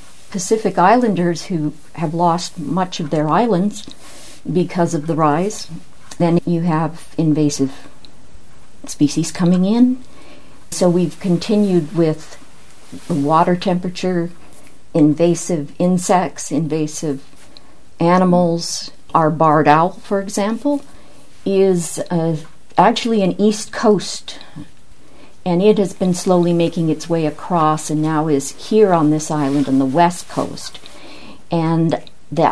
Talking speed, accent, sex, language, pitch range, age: 115 wpm, American, female, English, 150-185 Hz, 50-69